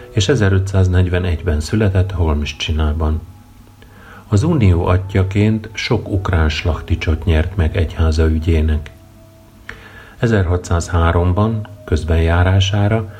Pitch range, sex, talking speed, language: 85-105 Hz, male, 80 wpm, Hungarian